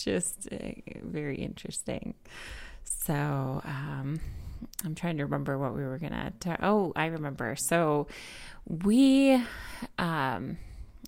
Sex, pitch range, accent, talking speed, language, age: female, 140-170 Hz, American, 110 wpm, English, 30-49